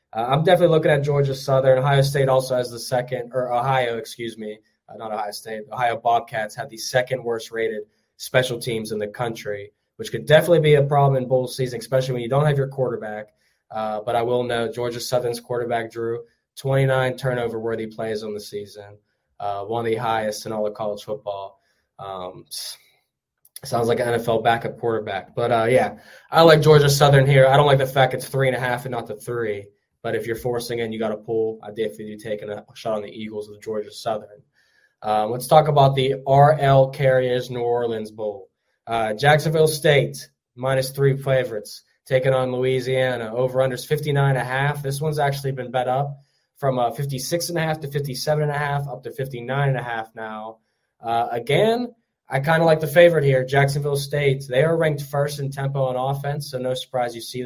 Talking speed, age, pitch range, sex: 190 wpm, 10-29, 115-140 Hz, male